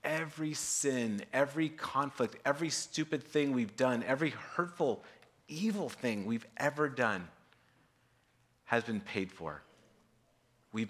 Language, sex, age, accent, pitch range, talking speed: English, male, 30-49, American, 115-155 Hz, 115 wpm